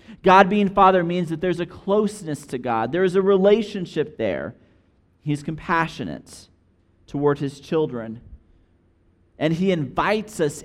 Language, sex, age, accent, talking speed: English, male, 40-59, American, 135 wpm